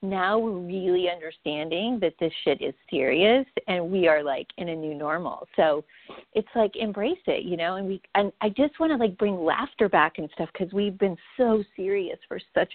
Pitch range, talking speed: 170-225 Hz, 205 wpm